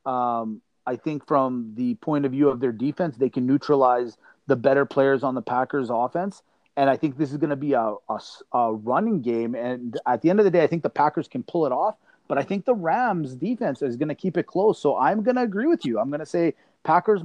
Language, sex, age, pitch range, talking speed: English, male, 30-49, 140-195 Hz, 255 wpm